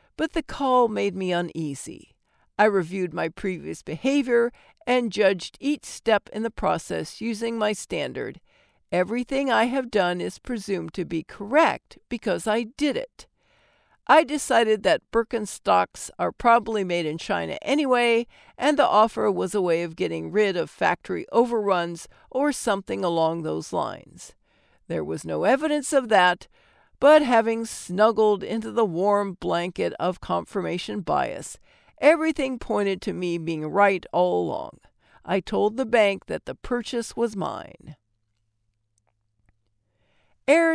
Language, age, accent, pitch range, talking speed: English, 60-79, American, 180-250 Hz, 140 wpm